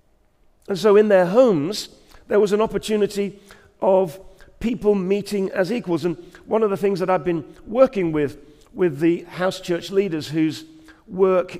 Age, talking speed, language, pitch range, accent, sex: 50-69, 160 wpm, English, 150-195 Hz, British, male